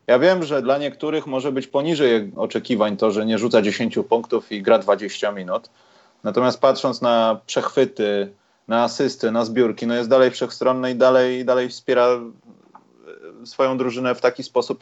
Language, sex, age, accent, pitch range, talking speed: Polish, male, 30-49, native, 100-130 Hz, 160 wpm